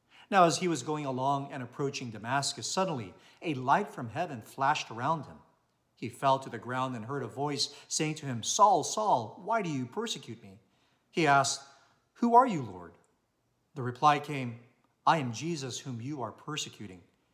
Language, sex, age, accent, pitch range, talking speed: English, male, 50-69, American, 125-160 Hz, 180 wpm